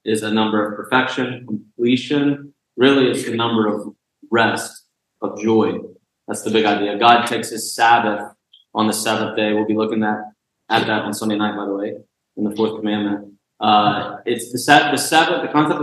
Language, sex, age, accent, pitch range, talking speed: English, male, 20-39, American, 105-120 Hz, 195 wpm